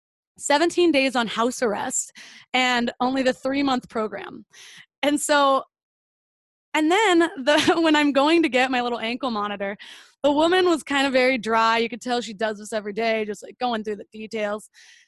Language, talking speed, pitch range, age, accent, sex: English, 180 wpm, 230-295 Hz, 20-39, American, female